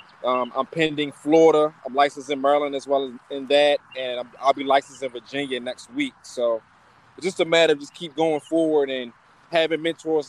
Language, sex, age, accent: English, male, 20-39, American